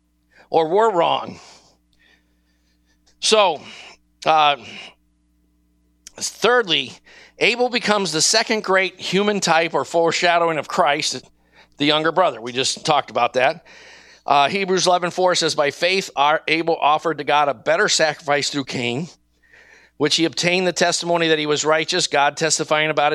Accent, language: American, English